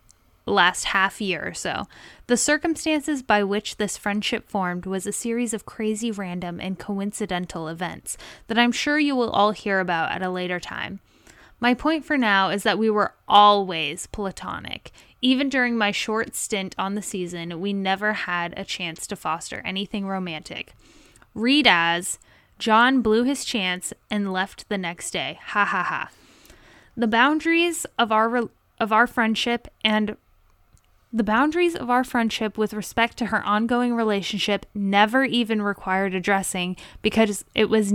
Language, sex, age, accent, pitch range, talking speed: English, female, 10-29, American, 190-230 Hz, 160 wpm